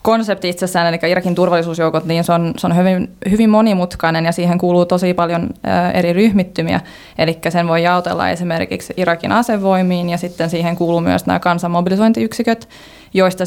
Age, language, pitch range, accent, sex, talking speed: 20-39, Finnish, 165-185 Hz, native, female, 160 wpm